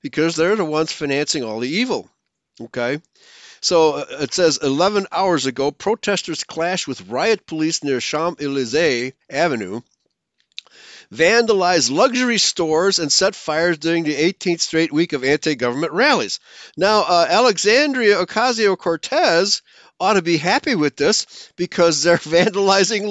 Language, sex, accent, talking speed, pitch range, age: English, male, American, 130 wpm, 125-180 Hz, 50-69